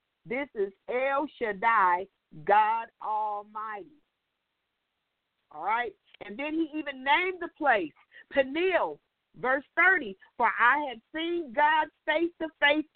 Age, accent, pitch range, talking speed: 50-69, American, 235-305 Hz, 120 wpm